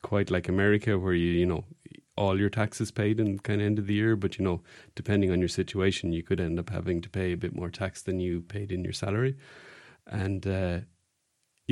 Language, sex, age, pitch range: English, male, 30-49, 95-130 Hz